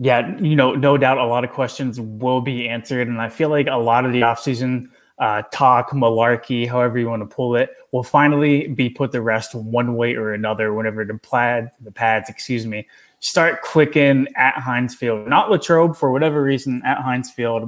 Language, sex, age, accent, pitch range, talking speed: English, male, 20-39, American, 120-145 Hz, 205 wpm